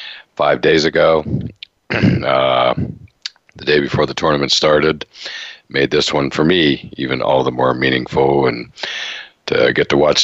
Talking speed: 145 wpm